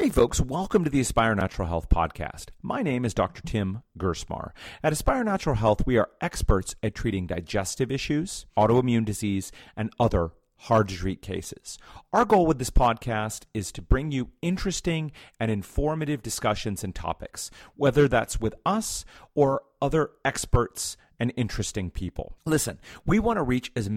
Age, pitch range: 40-59, 95-140 Hz